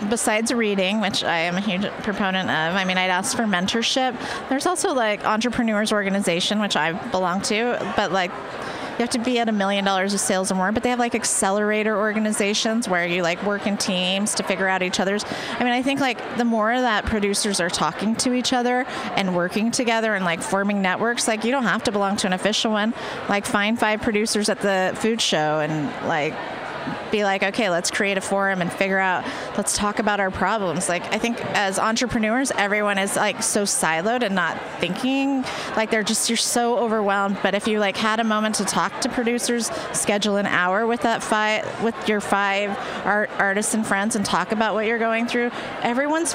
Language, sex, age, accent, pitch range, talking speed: English, female, 30-49, American, 190-230 Hz, 210 wpm